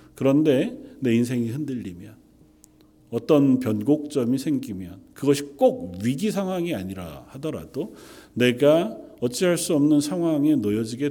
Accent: native